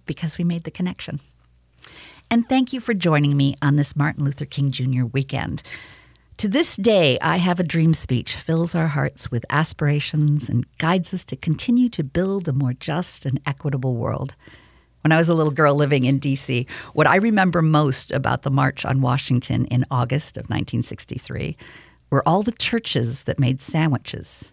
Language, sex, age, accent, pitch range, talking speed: English, female, 50-69, American, 135-175 Hz, 180 wpm